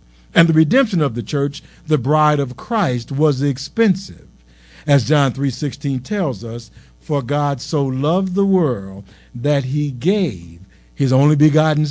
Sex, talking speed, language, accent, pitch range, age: male, 150 wpm, English, American, 115-155 Hz, 50-69